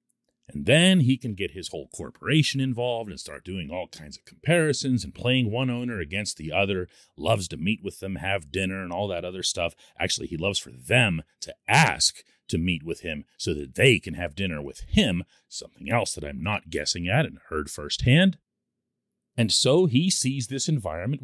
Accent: American